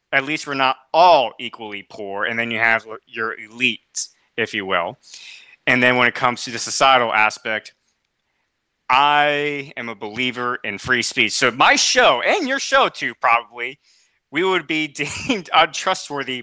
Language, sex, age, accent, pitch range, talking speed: English, male, 30-49, American, 125-160 Hz, 165 wpm